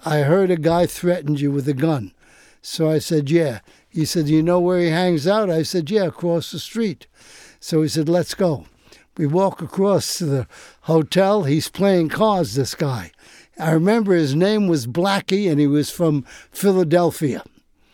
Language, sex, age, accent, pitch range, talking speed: English, male, 60-79, American, 150-180 Hz, 180 wpm